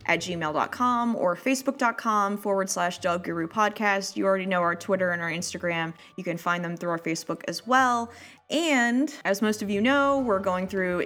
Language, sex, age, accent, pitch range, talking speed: English, female, 20-39, American, 175-225 Hz, 190 wpm